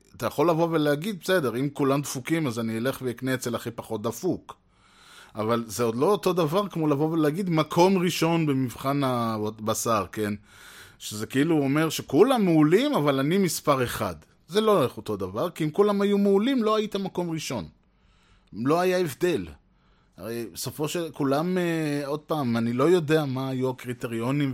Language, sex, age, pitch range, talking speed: Hebrew, male, 20-39, 115-155 Hz, 165 wpm